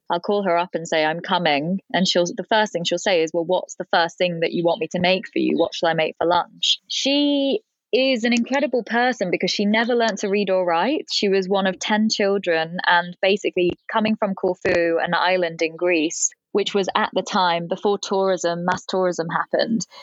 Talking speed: 220 wpm